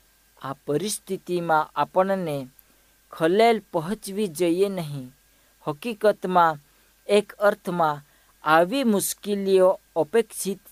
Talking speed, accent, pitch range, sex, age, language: 90 wpm, native, 155-210 Hz, female, 50-69, Hindi